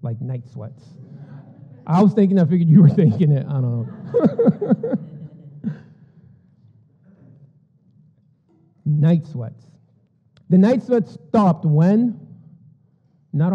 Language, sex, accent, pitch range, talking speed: English, male, American, 145-190 Hz, 100 wpm